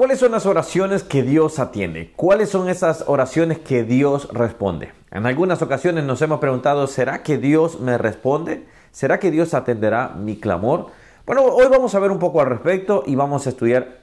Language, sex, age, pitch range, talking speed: Spanish, male, 40-59, 125-175 Hz, 190 wpm